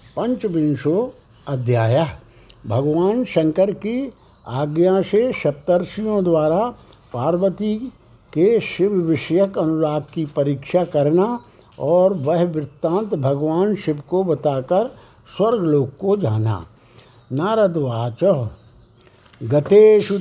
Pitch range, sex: 155-200 Hz, male